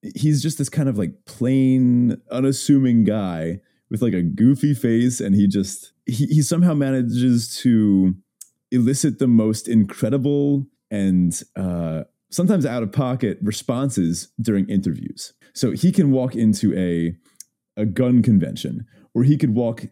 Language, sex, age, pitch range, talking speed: English, male, 30-49, 100-130 Hz, 145 wpm